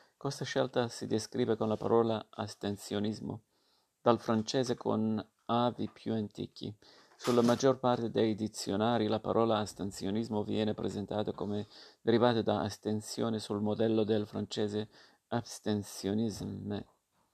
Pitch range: 110-120 Hz